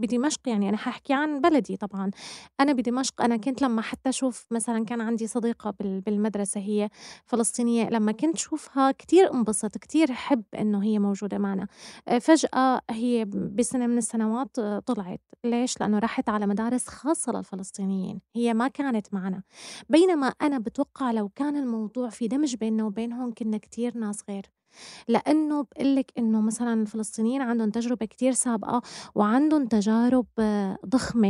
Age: 20-39